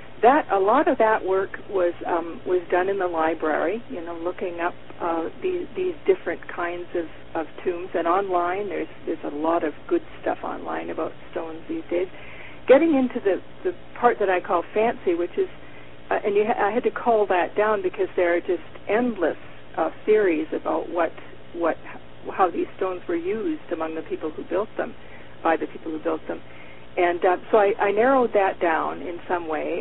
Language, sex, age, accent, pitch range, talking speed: English, female, 50-69, American, 170-265 Hz, 195 wpm